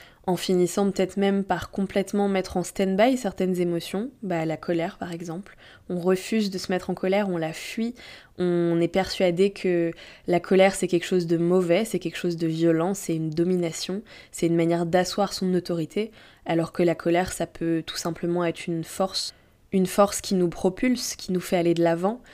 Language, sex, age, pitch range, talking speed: French, female, 20-39, 175-200 Hz, 195 wpm